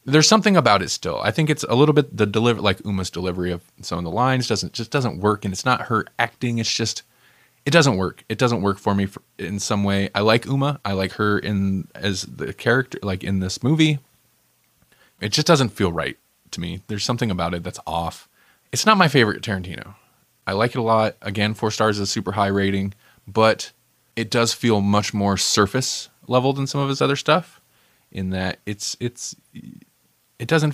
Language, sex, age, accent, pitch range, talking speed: English, male, 20-39, American, 100-125 Hz, 215 wpm